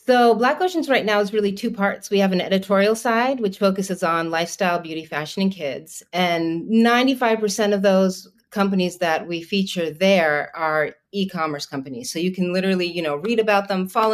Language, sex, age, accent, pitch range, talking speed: English, female, 30-49, American, 150-195 Hz, 185 wpm